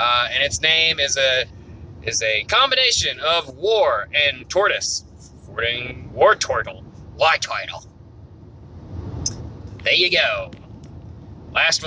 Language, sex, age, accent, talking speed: English, male, 30-49, American, 105 wpm